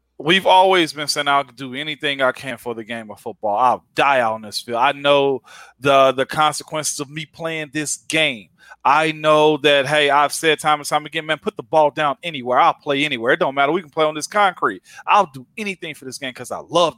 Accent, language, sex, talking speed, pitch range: American, English, male, 235 wpm, 145-180 Hz